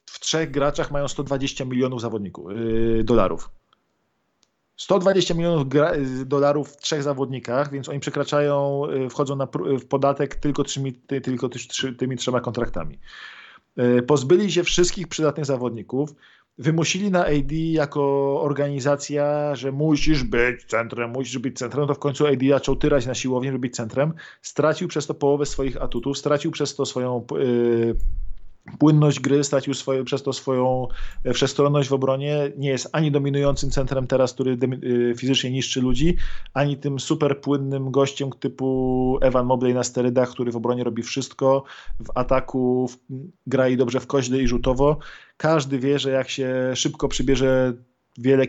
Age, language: 40-59, Polish